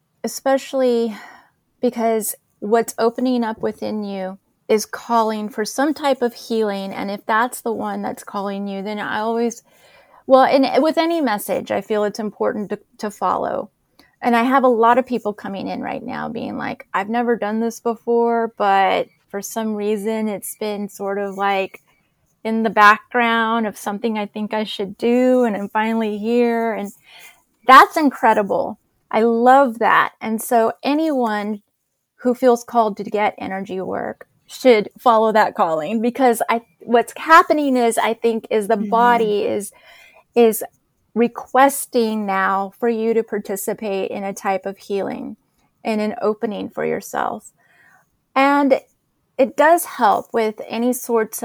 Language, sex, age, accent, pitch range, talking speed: English, female, 30-49, American, 210-245 Hz, 155 wpm